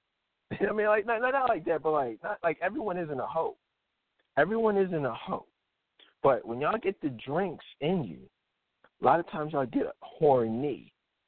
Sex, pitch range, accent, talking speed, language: male, 120-180 Hz, American, 200 wpm, English